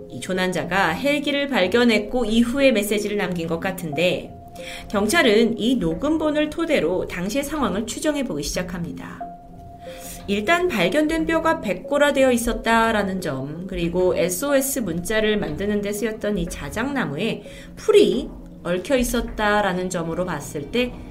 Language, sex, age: Korean, female, 30-49